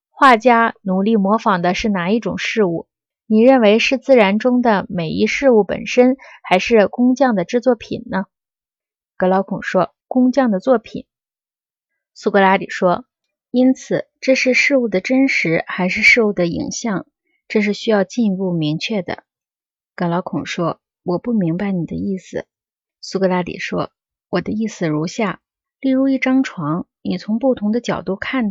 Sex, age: female, 20-39